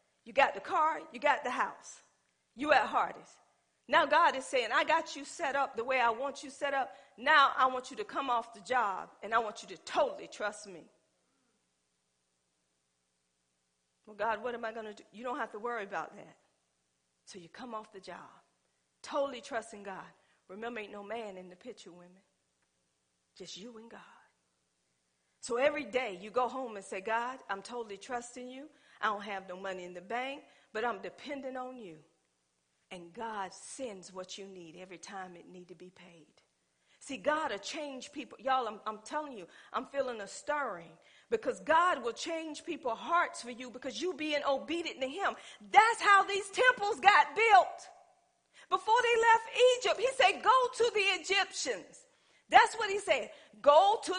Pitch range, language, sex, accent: 190-310 Hz, English, female, American